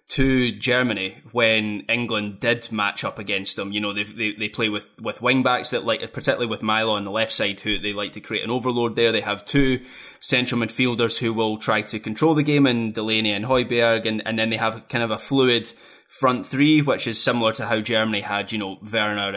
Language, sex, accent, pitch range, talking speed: English, male, British, 110-130 Hz, 225 wpm